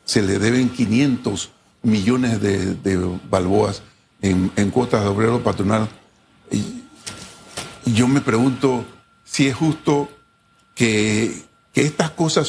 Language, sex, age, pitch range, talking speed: Spanish, male, 50-69, 110-135 Hz, 120 wpm